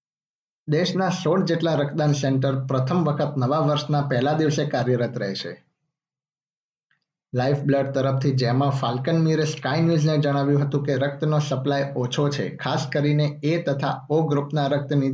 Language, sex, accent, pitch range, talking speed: Gujarati, male, native, 130-150 Hz, 120 wpm